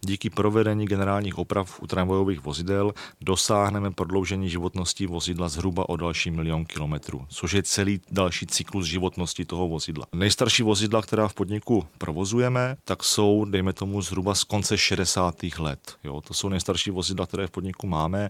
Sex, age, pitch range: male, 30-49, 90-100 Hz